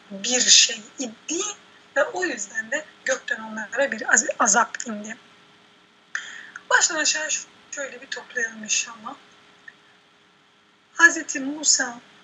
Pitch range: 245-315 Hz